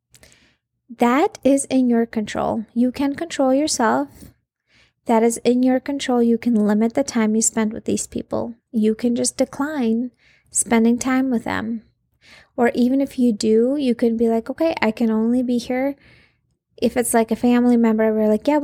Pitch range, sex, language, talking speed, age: 225-260 Hz, female, English, 180 wpm, 20-39